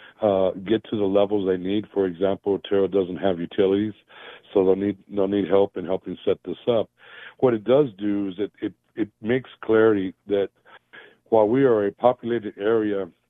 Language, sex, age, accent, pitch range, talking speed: English, male, 60-79, American, 95-105 Hz, 200 wpm